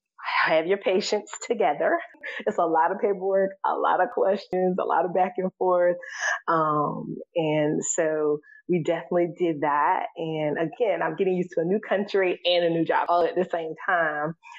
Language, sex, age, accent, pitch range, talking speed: English, female, 20-39, American, 155-195 Hz, 180 wpm